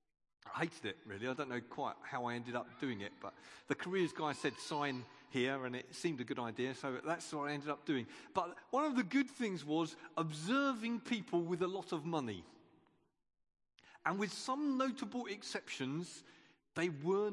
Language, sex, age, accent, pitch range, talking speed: English, male, 40-59, British, 160-250 Hz, 190 wpm